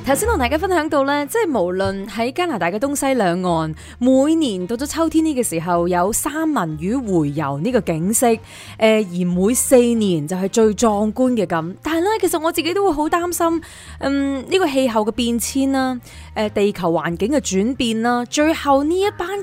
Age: 20-39